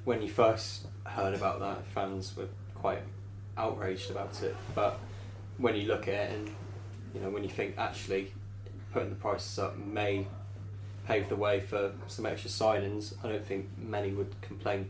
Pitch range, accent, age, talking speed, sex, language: 100-105 Hz, British, 20-39, 175 wpm, male, English